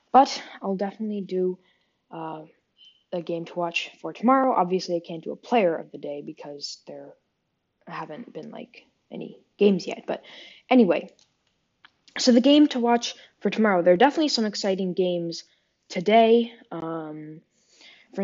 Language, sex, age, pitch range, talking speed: English, female, 20-39, 175-225 Hz, 150 wpm